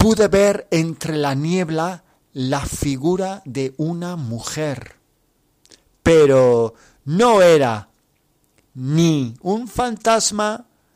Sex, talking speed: male, 90 wpm